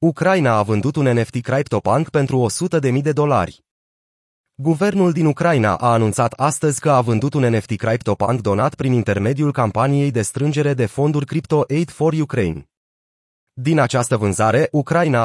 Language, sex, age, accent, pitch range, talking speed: Romanian, male, 20-39, native, 115-150 Hz, 150 wpm